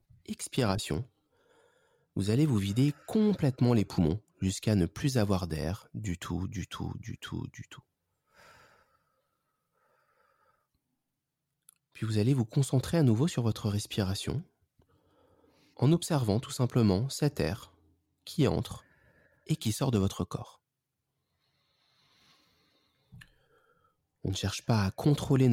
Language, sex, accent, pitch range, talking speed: French, male, French, 100-150 Hz, 120 wpm